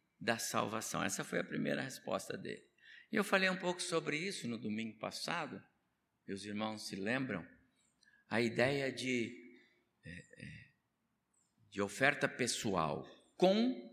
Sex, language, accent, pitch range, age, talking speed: male, Portuguese, Brazilian, 135-220 Hz, 60-79, 125 wpm